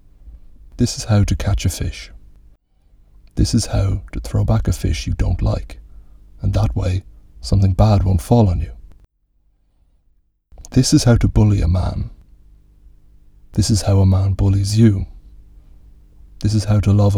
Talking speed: 160 wpm